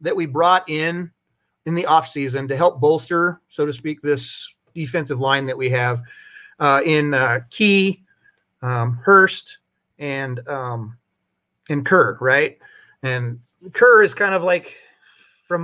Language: English